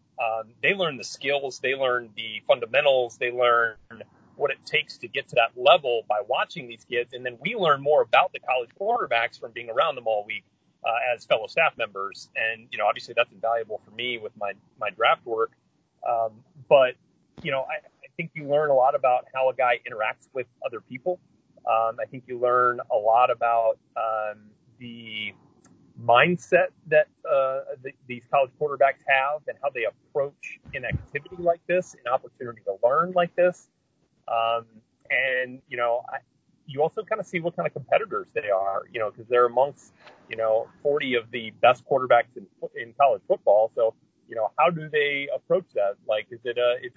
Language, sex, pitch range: English, male, 115-155 Hz